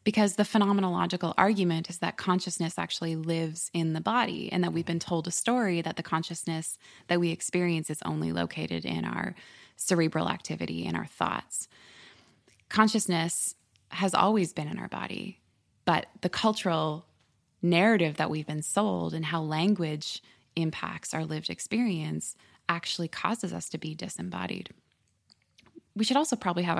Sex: female